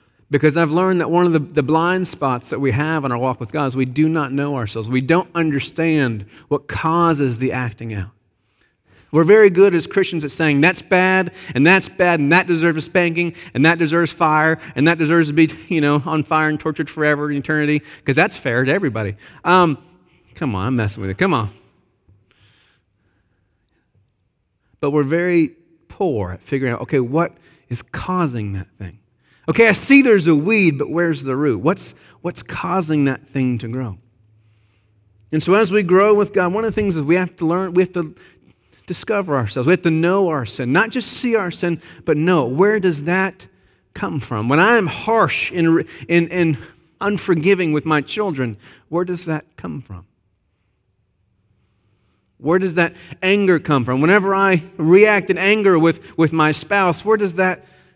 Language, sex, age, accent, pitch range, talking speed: English, male, 40-59, American, 125-180 Hz, 190 wpm